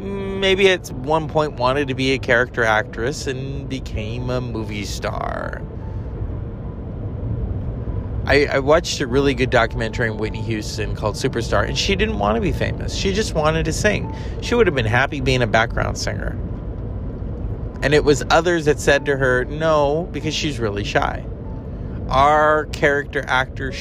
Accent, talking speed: American, 160 wpm